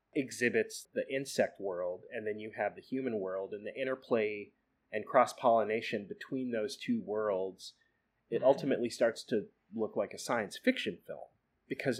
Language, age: English, 30-49